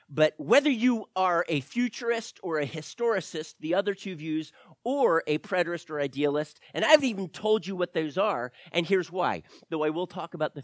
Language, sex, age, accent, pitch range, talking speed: English, male, 40-59, American, 135-195 Hz, 195 wpm